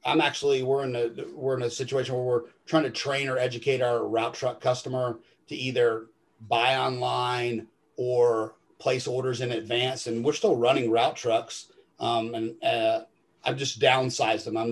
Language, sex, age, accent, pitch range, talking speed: English, male, 40-59, American, 120-140 Hz, 175 wpm